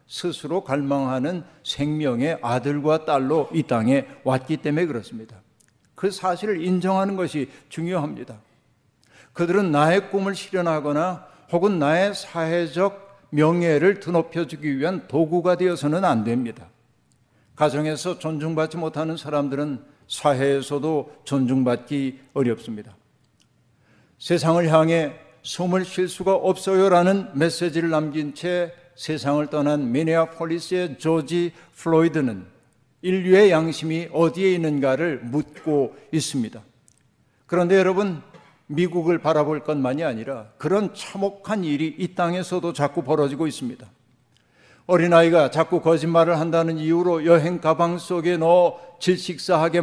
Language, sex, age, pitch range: Korean, male, 60-79, 140-175 Hz